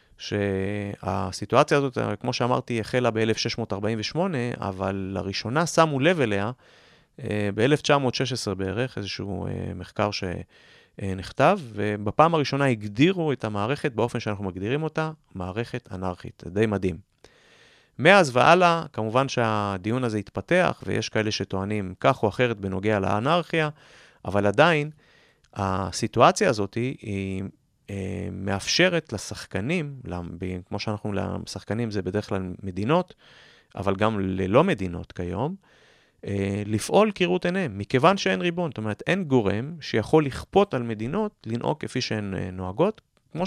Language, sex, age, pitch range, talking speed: Hebrew, male, 30-49, 100-135 Hz, 110 wpm